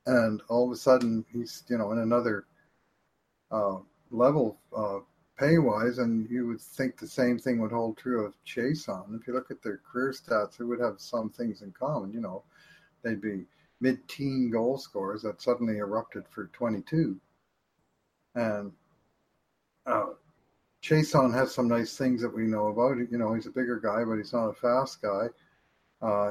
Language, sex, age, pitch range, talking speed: English, male, 50-69, 110-130 Hz, 175 wpm